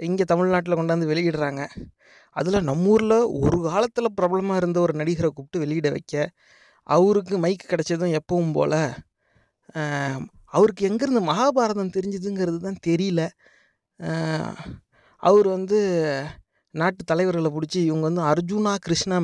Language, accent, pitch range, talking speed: English, Indian, 155-205 Hz, 95 wpm